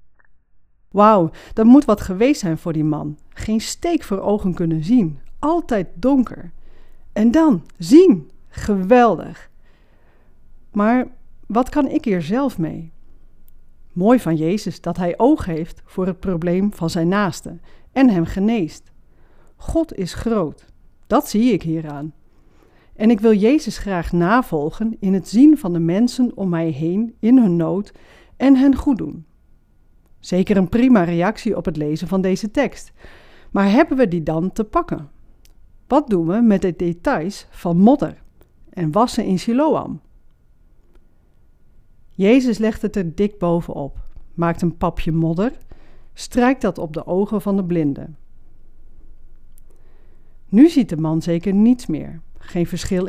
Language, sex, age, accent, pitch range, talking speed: Dutch, female, 40-59, Dutch, 170-235 Hz, 145 wpm